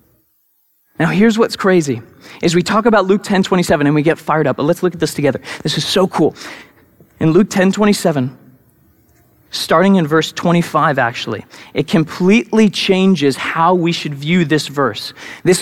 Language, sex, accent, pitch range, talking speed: English, male, American, 155-195 Hz, 175 wpm